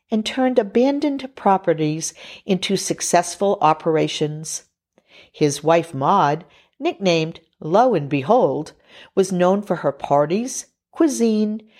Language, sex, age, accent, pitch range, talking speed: English, female, 50-69, American, 150-210 Hz, 100 wpm